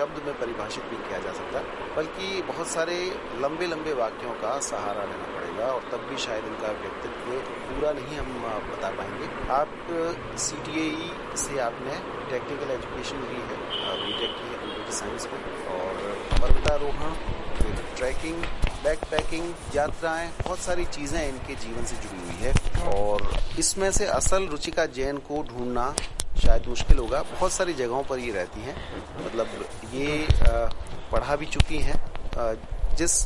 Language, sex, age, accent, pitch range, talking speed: Hindi, male, 30-49, native, 120-155 Hz, 100 wpm